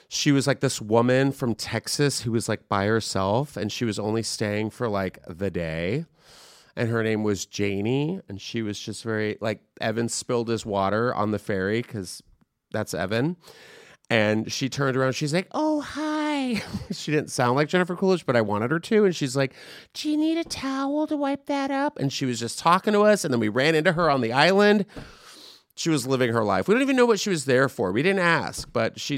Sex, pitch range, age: male, 115-195 Hz, 30-49